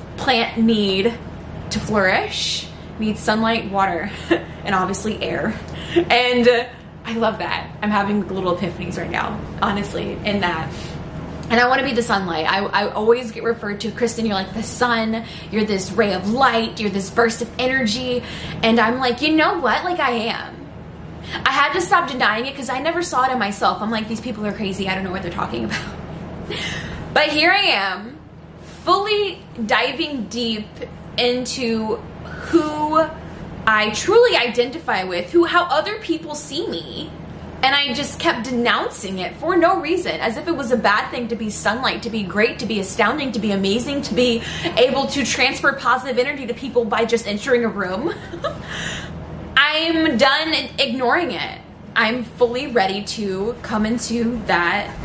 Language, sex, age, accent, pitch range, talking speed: English, female, 10-29, American, 210-270 Hz, 175 wpm